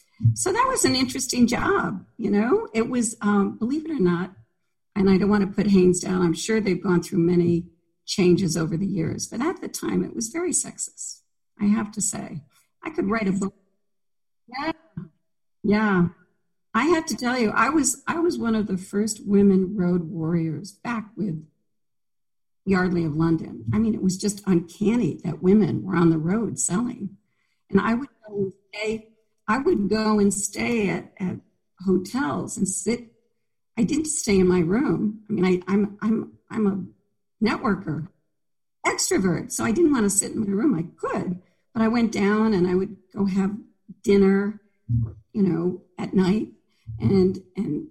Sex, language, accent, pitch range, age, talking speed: female, English, American, 180-220 Hz, 50-69, 180 wpm